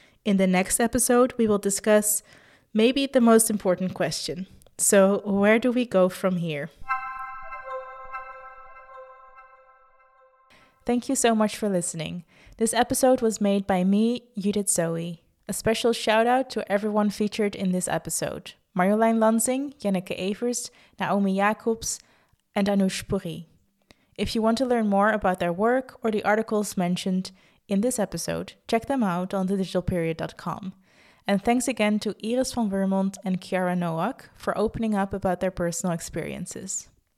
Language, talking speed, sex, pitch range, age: English, 145 wpm, female, 185-230 Hz, 20-39